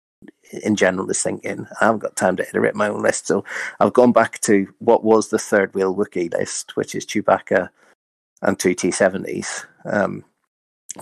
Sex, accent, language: male, British, English